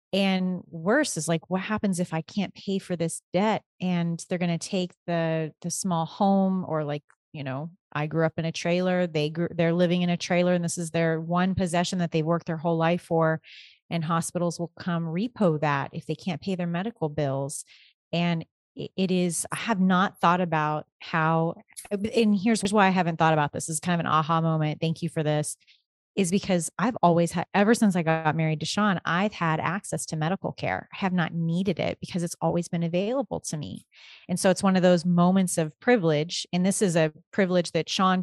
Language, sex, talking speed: English, female, 220 wpm